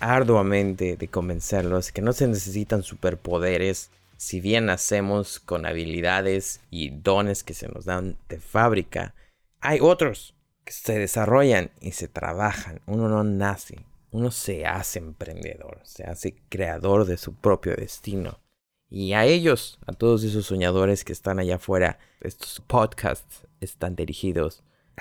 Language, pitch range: Spanish, 90-120 Hz